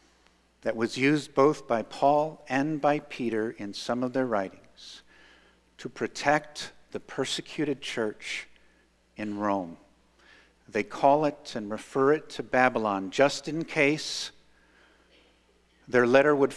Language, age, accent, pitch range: English, 50-69, American, 110-135 Hz